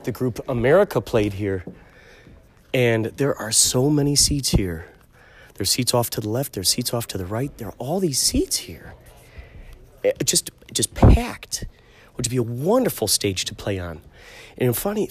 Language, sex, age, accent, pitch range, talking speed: English, male, 30-49, American, 100-135 Hz, 170 wpm